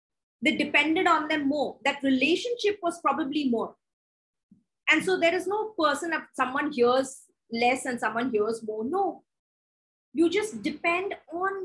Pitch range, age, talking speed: 250-320 Hz, 20-39, 150 wpm